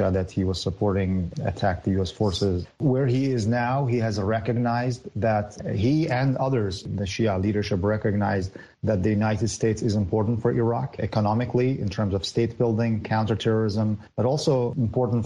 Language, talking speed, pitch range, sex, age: English, 160 wpm, 105-120 Hz, male, 30-49